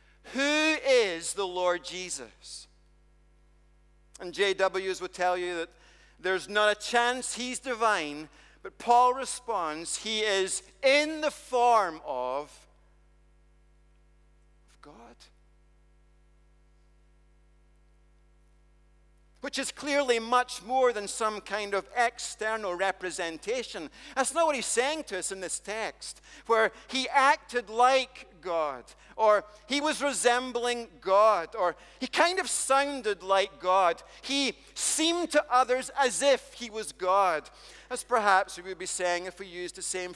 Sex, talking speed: male, 125 wpm